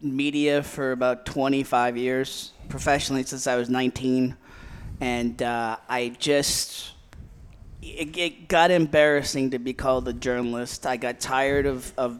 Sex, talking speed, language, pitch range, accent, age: male, 140 wpm, English, 120-140 Hz, American, 30-49